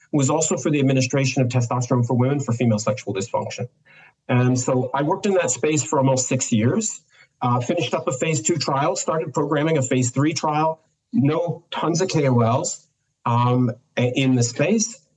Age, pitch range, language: 40-59, 125-150 Hz, English